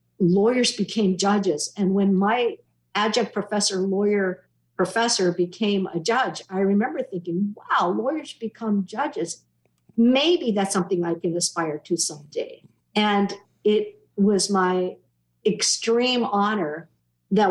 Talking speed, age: 120 wpm, 50-69